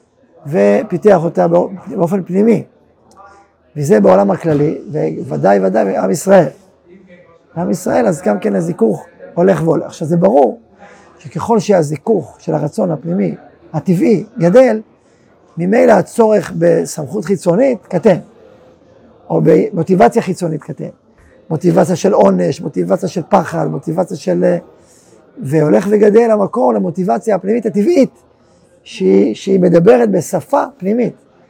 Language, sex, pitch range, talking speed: Hebrew, male, 170-215 Hz, 110 wpm